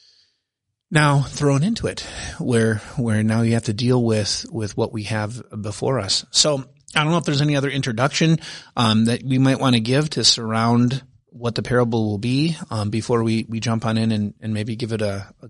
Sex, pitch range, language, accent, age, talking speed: male, 105-125 Hz, English, American, 30-49, 215 wpm